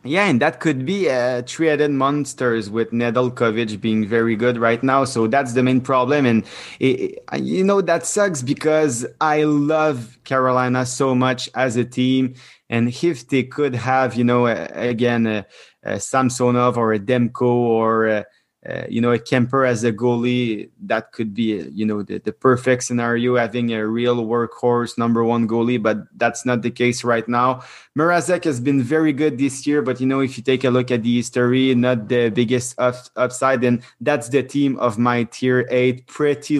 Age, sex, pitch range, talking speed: 20-39, male, 120-135 Hz, 190 wpm